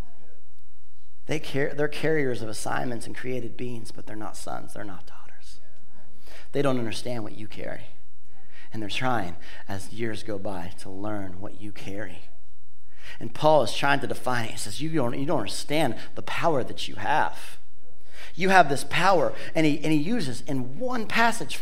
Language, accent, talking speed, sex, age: English, American, 170 wpm, male, 40-59